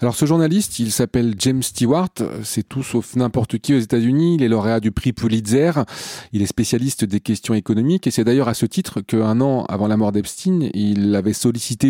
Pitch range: 110-135 Hz